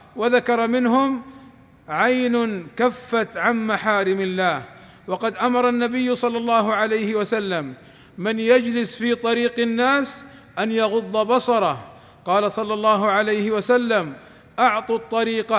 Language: Arabic